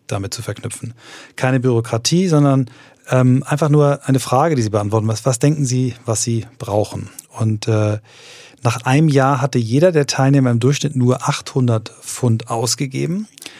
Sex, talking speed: male, 160 wpm